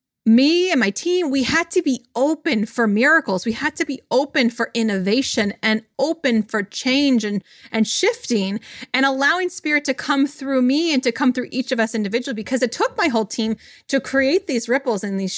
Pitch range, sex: 225-290 Hz, female